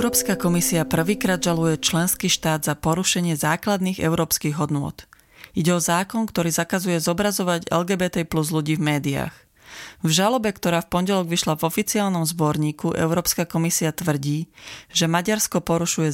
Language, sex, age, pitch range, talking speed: Slovak, female, 30-49, 155-185 Hz, 140 wpm